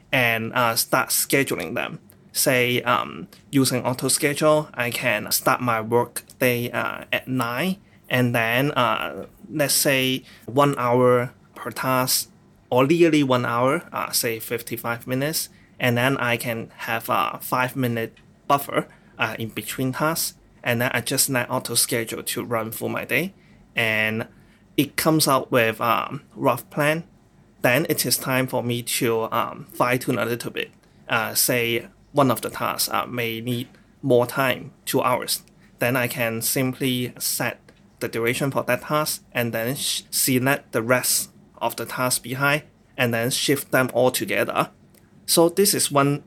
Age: 20-39